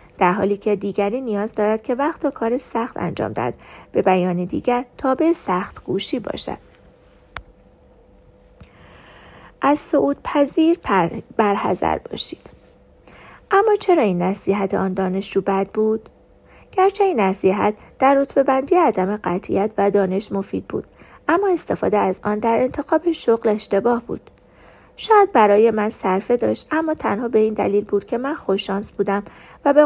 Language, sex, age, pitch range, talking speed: Persian, female, 40-59, 200-275 Hz, 145 wpm